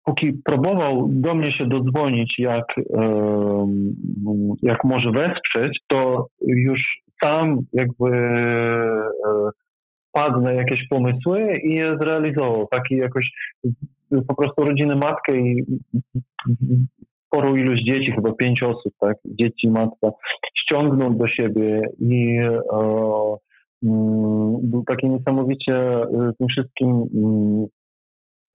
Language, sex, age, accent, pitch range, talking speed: Polish, male, 40-59, native, 110-135 Hz, 100 wpm